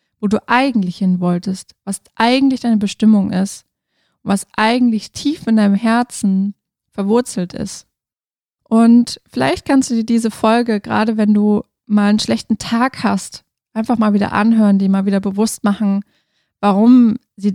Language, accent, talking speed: German, German, 150 wpm